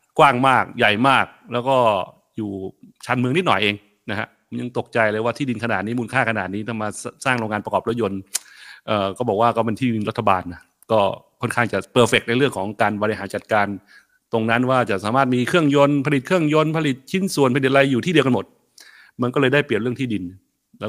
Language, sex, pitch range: Thai, male, 110-150 Hz